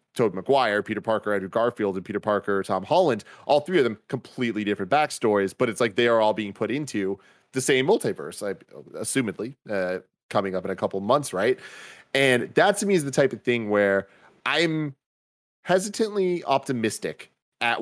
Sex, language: male, English